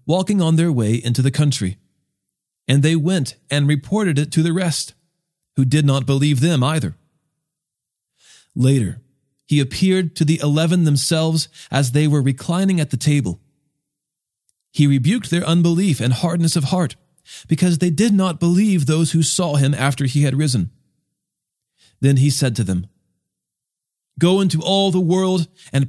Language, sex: English, male